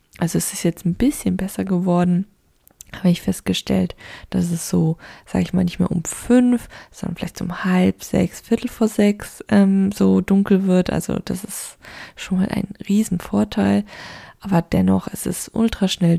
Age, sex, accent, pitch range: 20-39, female, German, 180-215 Hz